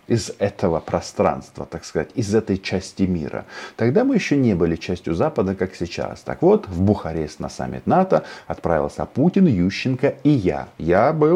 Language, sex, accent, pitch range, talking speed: Russian, male, native, 95-135 Hz, 170 wpm